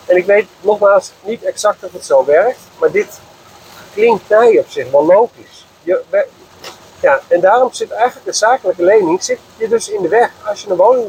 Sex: male